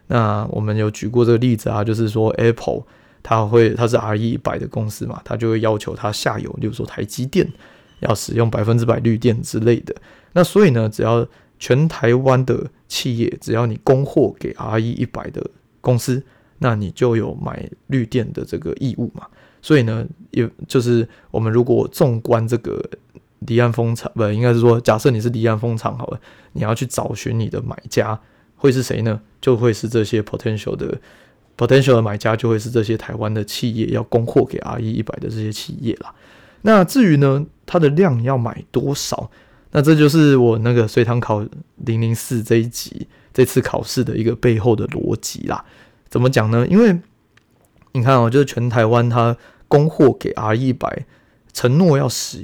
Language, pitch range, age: Chinese, 115-130 Hz, 20-39